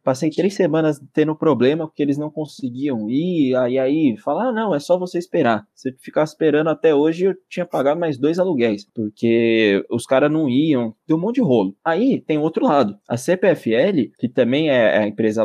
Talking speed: 200 wpm